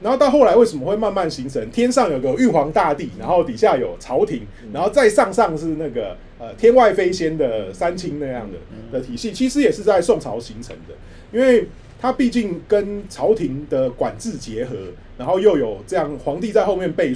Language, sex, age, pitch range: Chinese, male, 30-49, 155-255 Hz